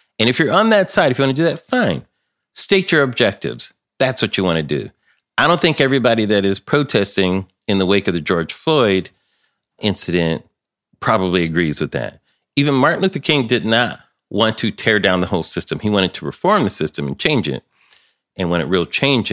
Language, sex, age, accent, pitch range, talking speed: English, male, 40-59, American, 90-120 Hz, 210 wpm